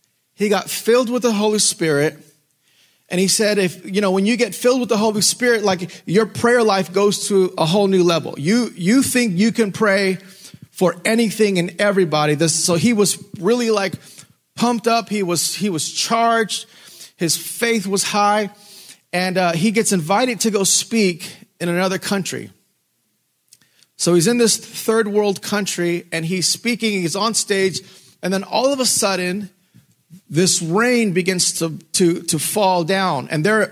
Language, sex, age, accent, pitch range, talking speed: English, male, 30-49, American, 180-225 Hz, 175 wpm